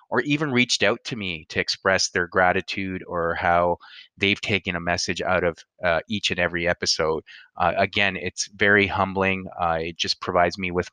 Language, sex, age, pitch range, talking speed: English, male, 30-49, 90-105 Hz, 185 wpm